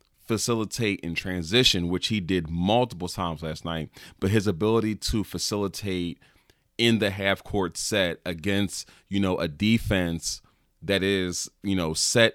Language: English